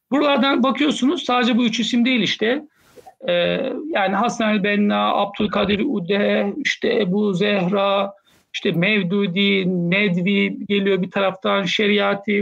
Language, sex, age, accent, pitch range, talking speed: Turkish, male, 60-79, native, 205-265 Hz, 115 wpm